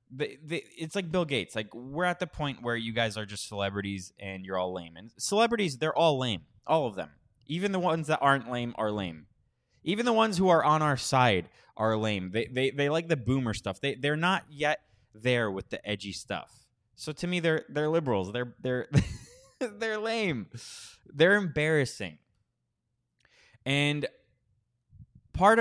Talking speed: 180 wpm